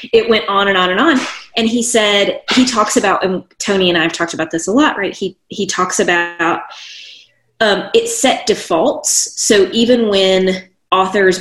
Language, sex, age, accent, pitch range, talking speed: English, female, 30-49, American, 190-275 Hz, 190 wpm